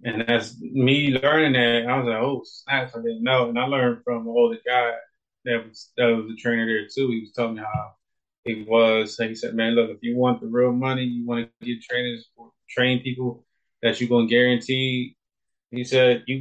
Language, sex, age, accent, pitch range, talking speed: English, male, 20-39, American, 115-130 Hz, 225 wpm